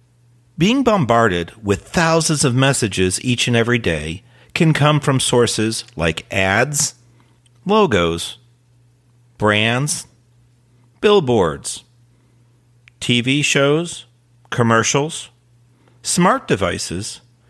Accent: American